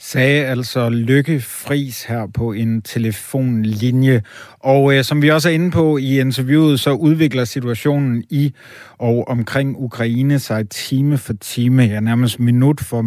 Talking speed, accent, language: 150 wpm, native, Danish